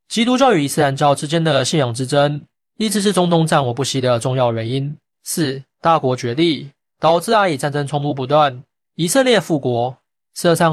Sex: male